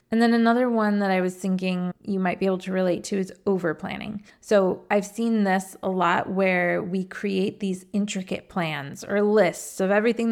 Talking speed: 200 wpm